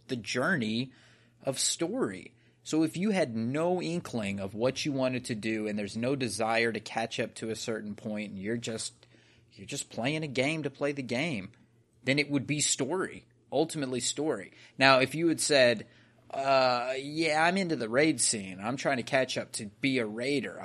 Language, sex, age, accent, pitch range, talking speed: English, male, 30-49, American, 110-140 Hz, 195 wpm